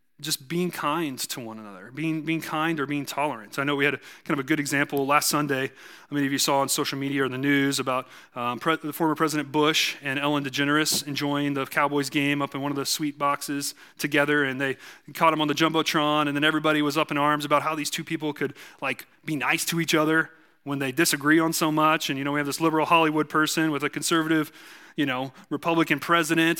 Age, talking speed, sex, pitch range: 30-49, 240 wpm, male, 145-165 Hz